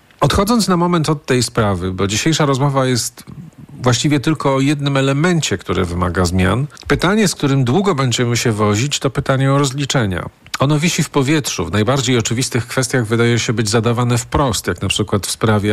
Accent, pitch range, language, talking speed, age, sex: native, 105-145 Hz, Polish, 180 wpm, 40-59, male